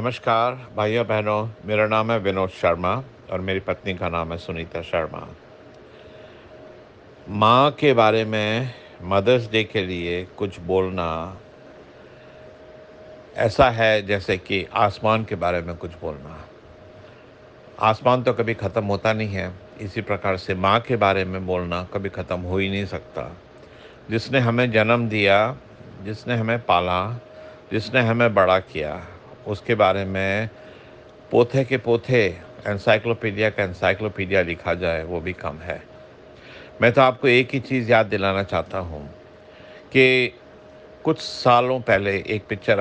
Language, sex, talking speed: English, male, 135 wpm